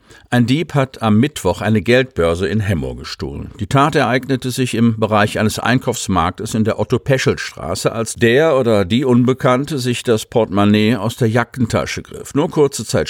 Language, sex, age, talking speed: German, male, 50-69, 165 wpm